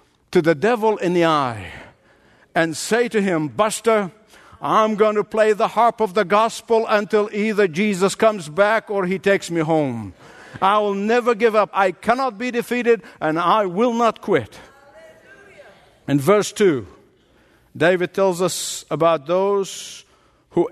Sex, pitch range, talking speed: male, 175-220 Hz, 155 wpm